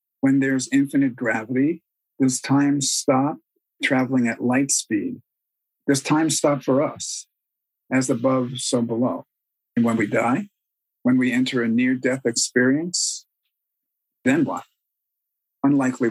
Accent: American